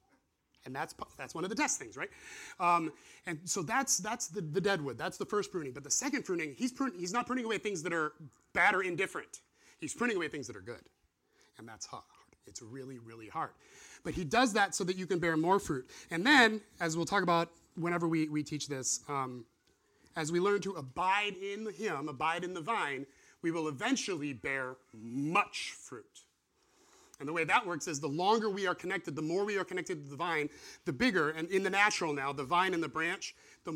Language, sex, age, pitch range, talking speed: English, male, 30-49, 150-210 Hz, 220 wpm